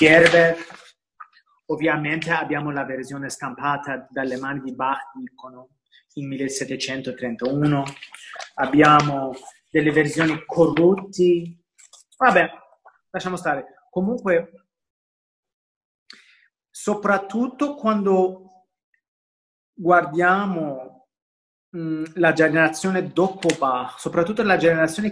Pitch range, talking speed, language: 155-200 Hz, 75 wpm, Italian